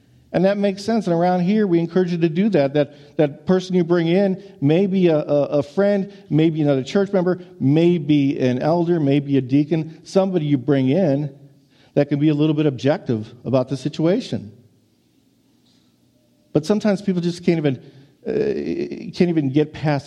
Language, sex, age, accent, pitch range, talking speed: English, male, 50-69, American, 135-175 Hz, 175 wpm